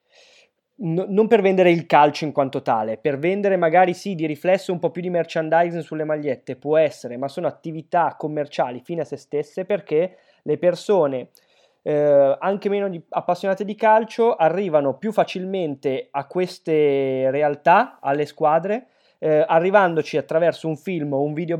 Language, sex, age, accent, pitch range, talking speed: Italian, male, 20-39, native, 150-195 Hz, 160 wpm